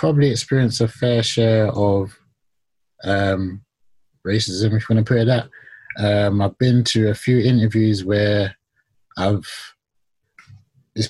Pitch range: 105-125 Hz